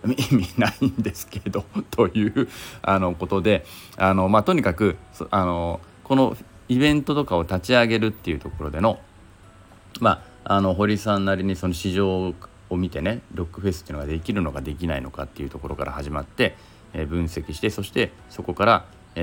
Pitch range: 80-105 Hz